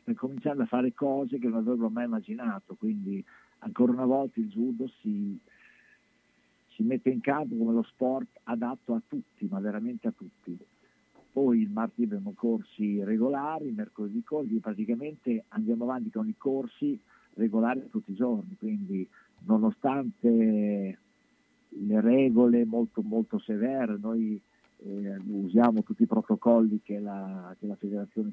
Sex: male